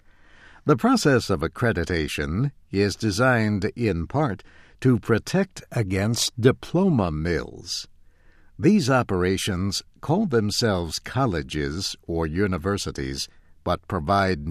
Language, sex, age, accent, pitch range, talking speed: English, male, 60-79, American, 85-120 Hz, 90 wpm